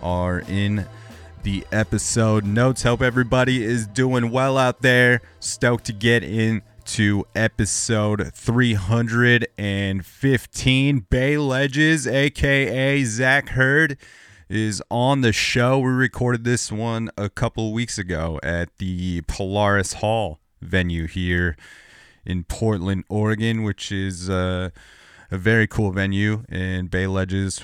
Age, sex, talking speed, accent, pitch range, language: 30-49, male, 120 wpm, American, 90-115 Hz, English